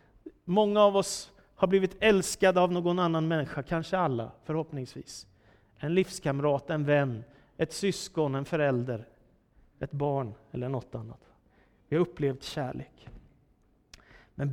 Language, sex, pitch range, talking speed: Swedish, male, 145-210 Hz, 130 wpm